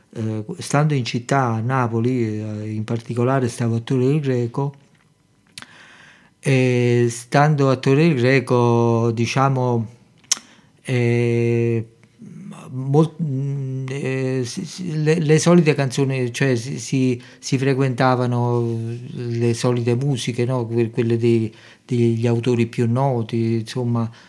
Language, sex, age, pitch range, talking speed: Italian, male, 50-69, 115-135 Hz, 85 wpm